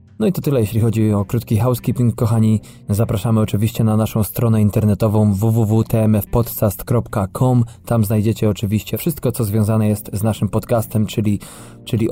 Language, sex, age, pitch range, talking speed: Polish, male, 20-39, 105-120 Hz, 145 wpm